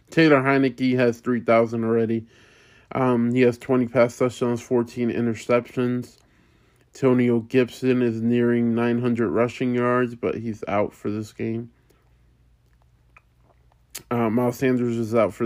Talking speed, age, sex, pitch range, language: 125 wpm, 20-39, male, 115-125 Hz, English